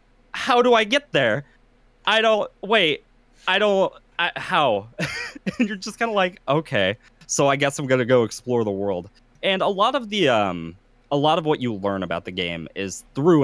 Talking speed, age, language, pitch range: 200 wpm, 20-39, English, 125-200 Hz